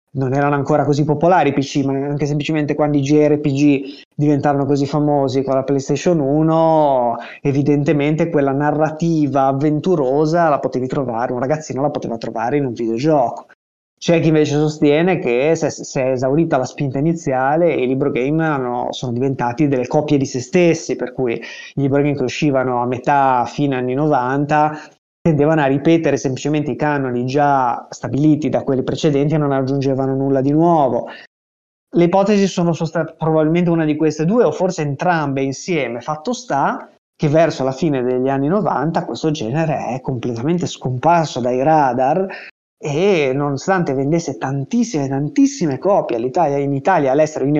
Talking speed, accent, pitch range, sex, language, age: 160 wpm, native, 135-160 Hz, male, Italian, 20-39